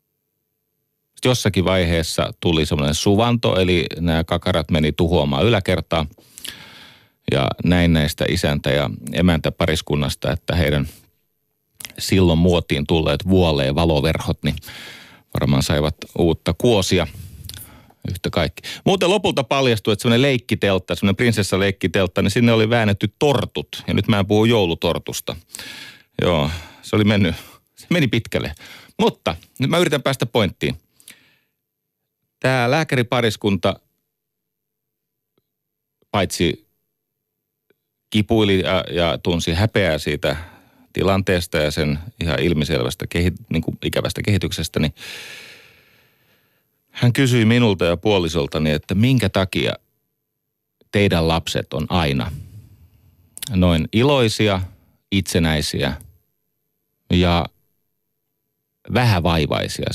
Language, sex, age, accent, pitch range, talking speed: Finnish, male, 40-59, native, 85-115 Hz, 100 wpm